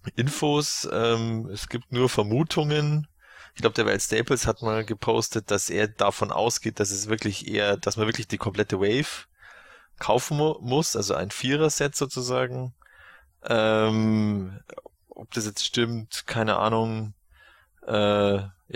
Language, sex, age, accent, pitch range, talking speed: German, male, 20-39, German, 105-125 Hz, 140 wpm